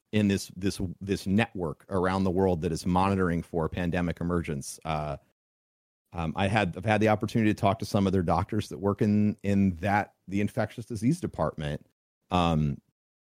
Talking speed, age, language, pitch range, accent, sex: 175 wpm, 40-59, English, 90-125 Hz, American, male